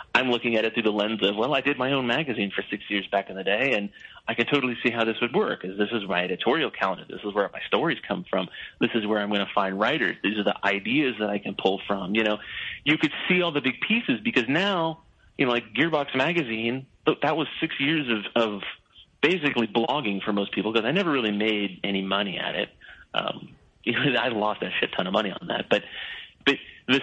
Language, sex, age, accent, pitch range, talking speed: English, male, 30-49, American, 105-140 Hz, 245 wpm